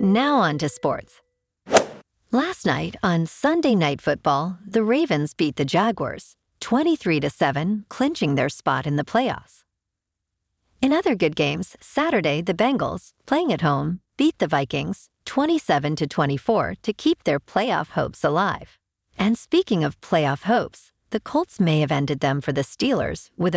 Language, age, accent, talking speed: English, 50-69, American, 145 wpm